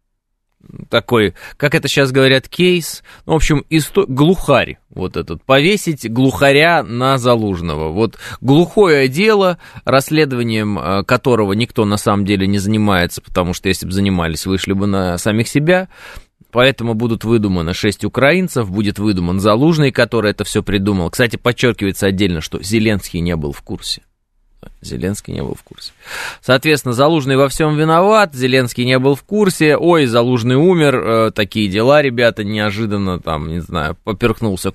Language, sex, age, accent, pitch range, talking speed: Russian, male, 20-39, native, 95-130 Hz, 145 wpm